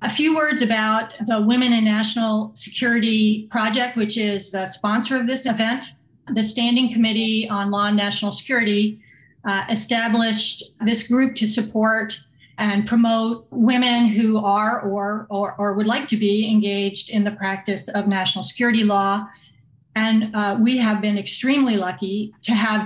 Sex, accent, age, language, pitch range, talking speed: female, American, 40-59, English, 200-225 Hz, 155 wpm